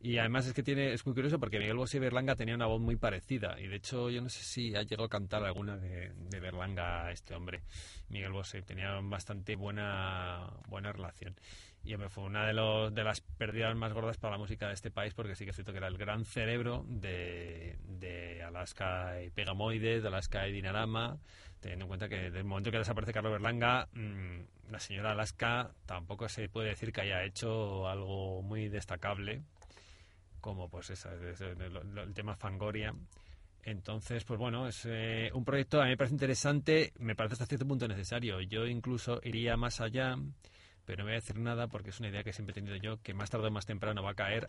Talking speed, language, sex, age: 210 wpm, Spanish, male, 30-49